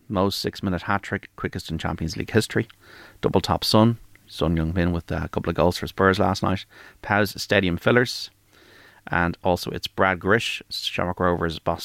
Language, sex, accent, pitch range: English, male, Irish, 85-105 Hz